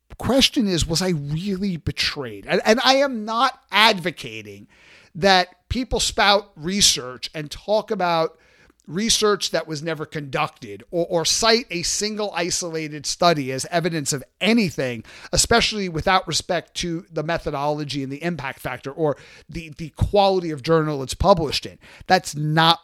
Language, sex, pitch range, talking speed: English, male, 145-195 Hz, 145 wpm